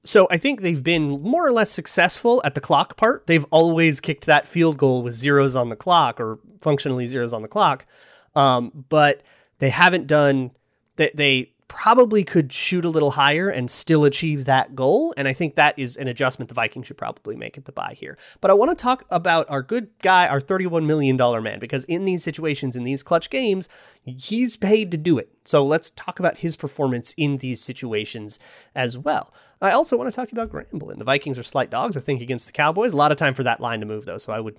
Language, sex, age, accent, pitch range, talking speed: English, male, 30-49, American, 130-170 Hz, 230 wpm